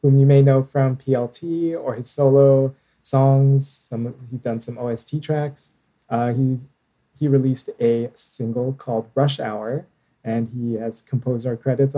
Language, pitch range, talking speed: English, 115-140 Hz, 155 wpm